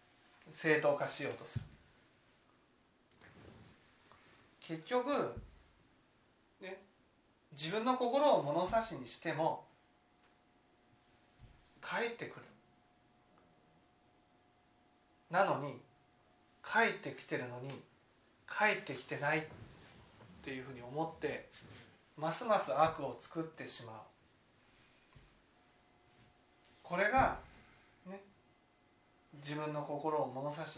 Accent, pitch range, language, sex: native, 120-170 Hz, Japanese, male